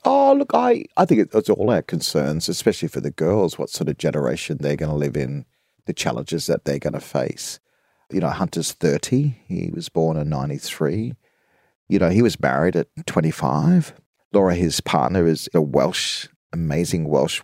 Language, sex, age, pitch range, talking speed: English, male, 40-59, 80-115 Hz, 180 wpm